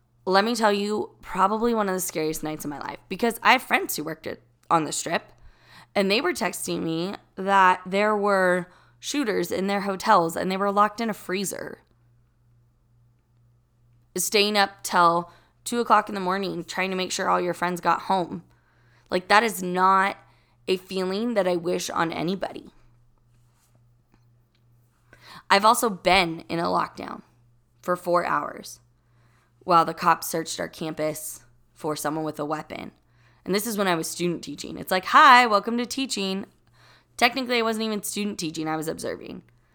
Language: English